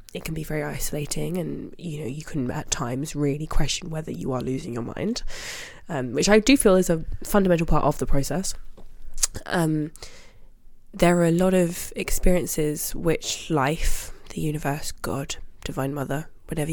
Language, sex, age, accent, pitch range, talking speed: English, female, 20-39, British, 135-165 Hz, 170 wpm